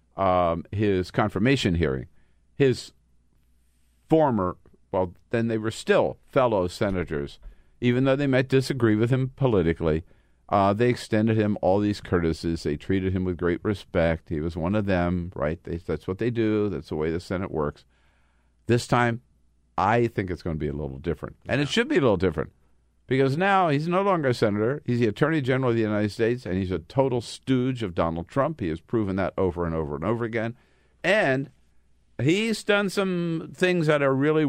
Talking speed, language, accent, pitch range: 190 wpm, English, American, 80-120 Hz